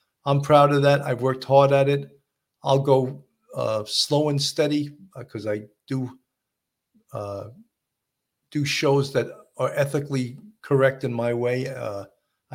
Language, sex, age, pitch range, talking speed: English, male, 50-69, 120-145 Hz, 145 wpm